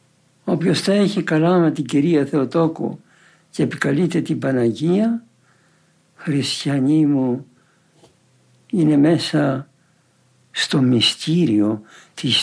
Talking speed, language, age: 90 wpm, Greek, 60-79